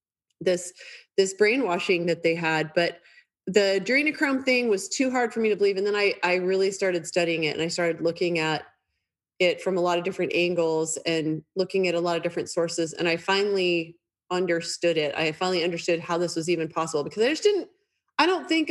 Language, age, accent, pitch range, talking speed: English, 30-49, American, 170-200 Hz, 210 wpm